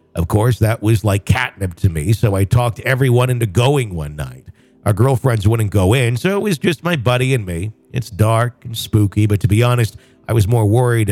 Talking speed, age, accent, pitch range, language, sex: 220 wpm, 50-69, American, 110-130 Hz, English, male